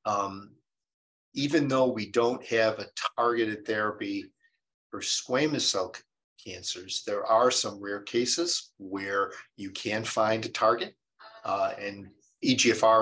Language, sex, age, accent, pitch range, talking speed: English, male, 50-69, American, 100-120 Hz, 130 wpm